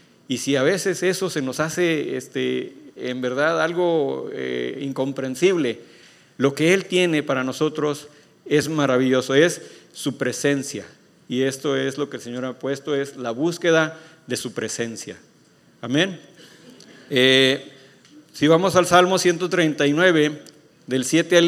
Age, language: 40-59, Spanish